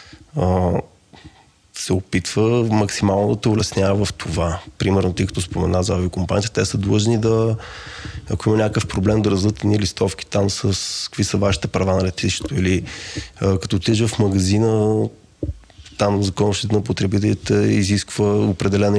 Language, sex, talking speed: Bulgarian, male, 145 wpm